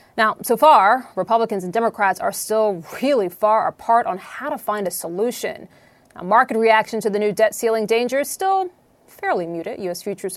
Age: 30-49